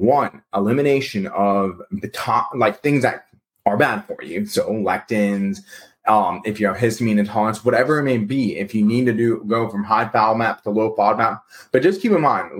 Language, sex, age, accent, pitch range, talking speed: English, male, 20-39, American, 110-140 Hz, 200 wpm